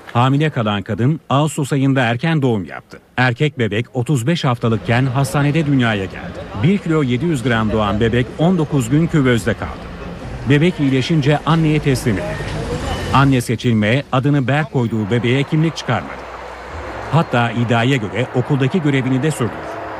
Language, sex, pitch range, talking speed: Turkish, male, 115-145 Hz, 135 wpm